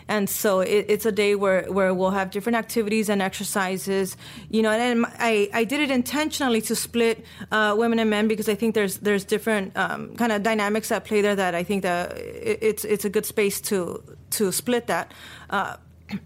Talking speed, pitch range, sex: 205 wpm, 190-220 Hz, female